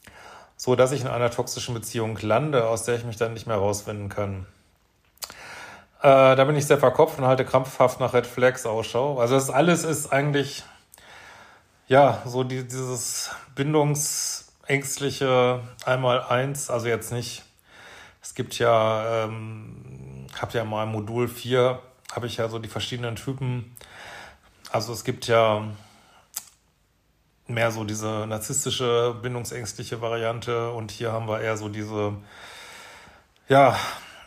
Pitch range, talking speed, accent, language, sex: 110-125 Hz, 140 wpm, German, German, male